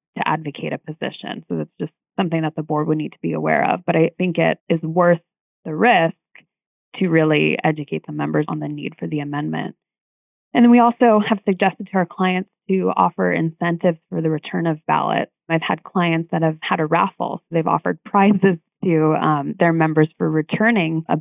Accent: American